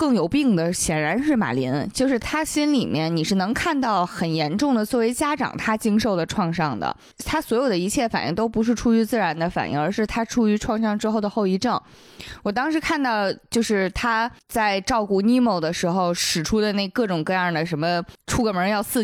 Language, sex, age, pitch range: Chinese, female, 20-39, 180-250 Hz